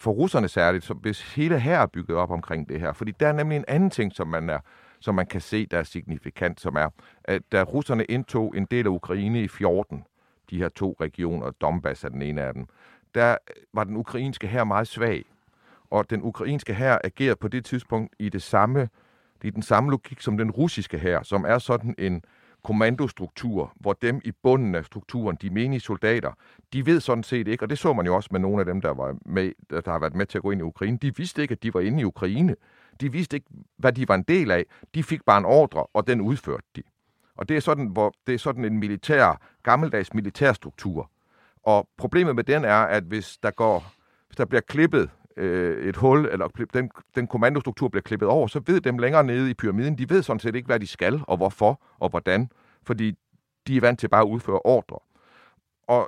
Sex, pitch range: male, 100-130 Hz